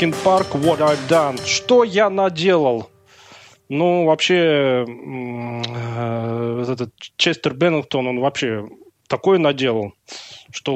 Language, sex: Russian, male